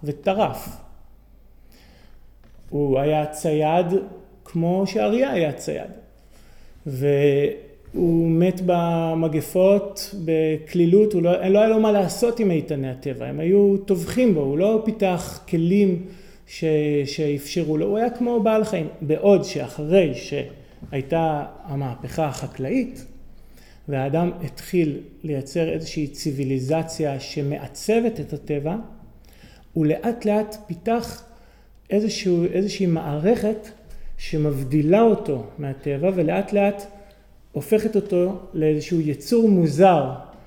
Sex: male